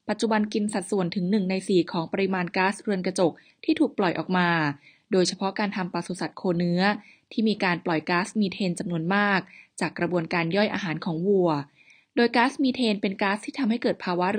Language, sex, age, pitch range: Thai, female, 20-39, 175-215 Hz